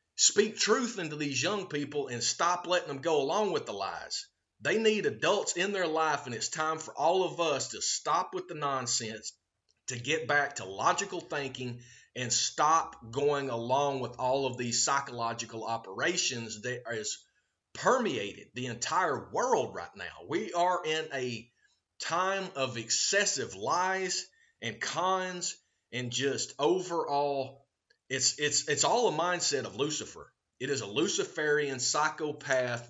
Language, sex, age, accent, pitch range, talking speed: English, male, 30-49, American, 125-180 Hz, 150 wpm